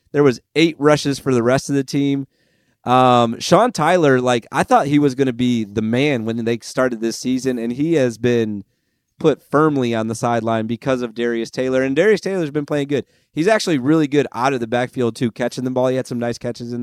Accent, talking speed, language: American, 230 wpm, English